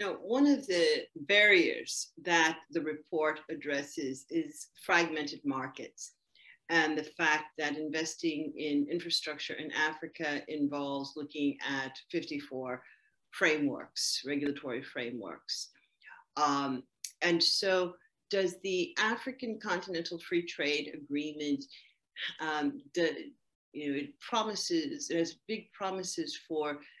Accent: American